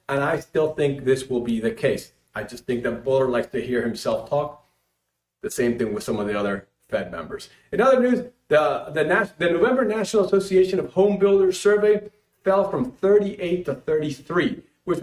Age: 40-59